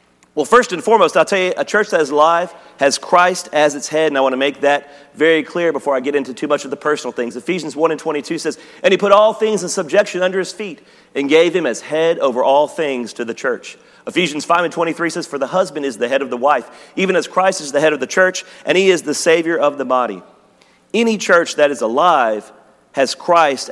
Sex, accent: male, American